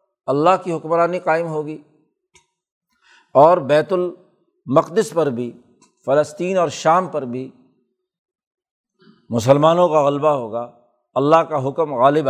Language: Urdu